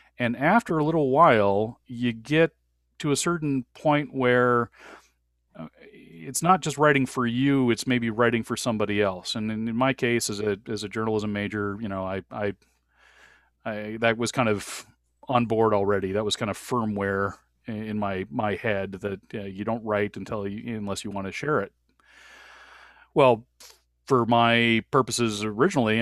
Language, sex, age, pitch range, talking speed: English, male, 40-59, 105-120 Hz, 170 wpm